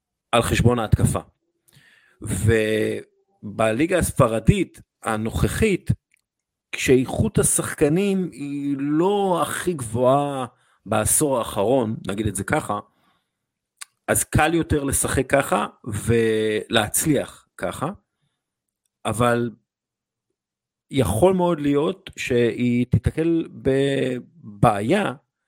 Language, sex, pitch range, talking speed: Hebrew, male, 105-130 Hz, 75 wpm